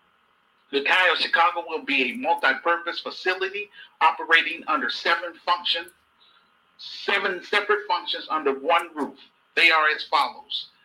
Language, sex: English, male